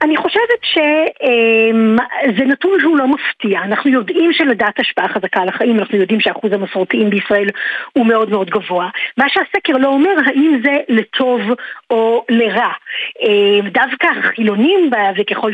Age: 50-69